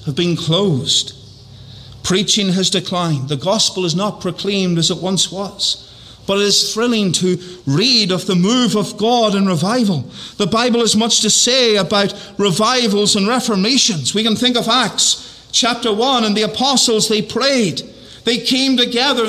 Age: 50-69